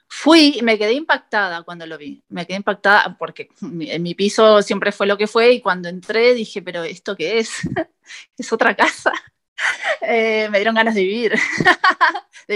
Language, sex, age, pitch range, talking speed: Spanish, female, 30-49, 185-235 Hz, 180 wpm